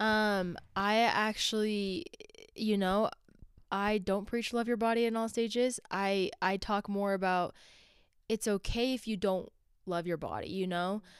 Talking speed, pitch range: 155 wpm, 185-225 Hz